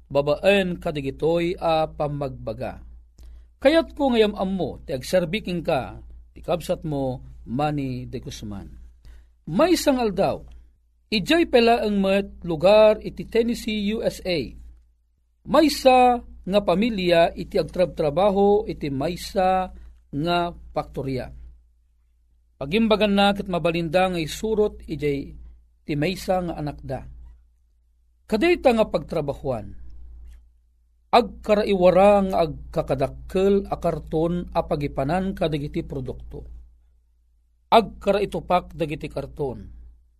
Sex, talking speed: male, 100 wpm